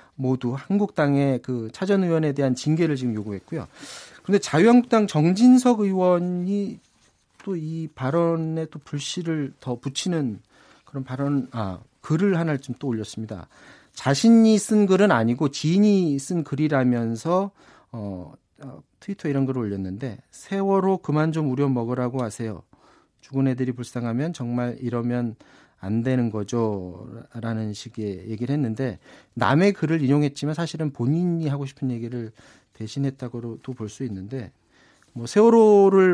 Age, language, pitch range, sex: 40-59, Korean, 115-160 Hz, male